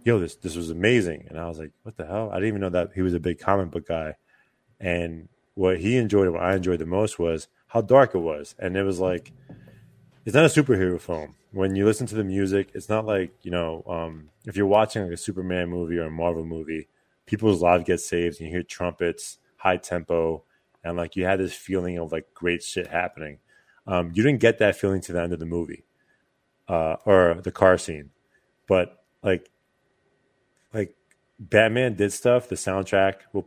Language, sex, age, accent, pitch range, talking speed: English, male, 20-39, American, 85-100 Hz, 210 wpm